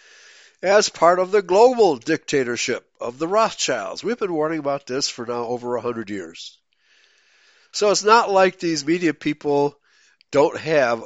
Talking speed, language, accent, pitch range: 155 wpm, English, American, 130-195 Hz